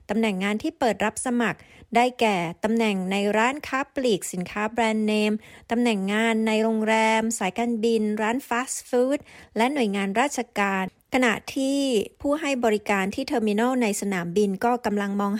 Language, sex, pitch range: Thai, female, 210-250 Hz